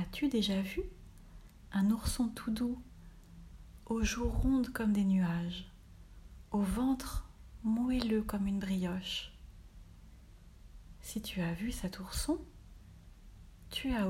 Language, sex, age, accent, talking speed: French, female, 40-59, French, 115 wpm